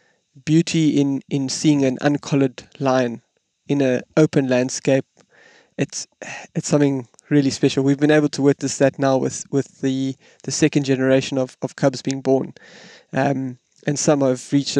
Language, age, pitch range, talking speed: English, 20-39, 130-145 Hz, 155 wpm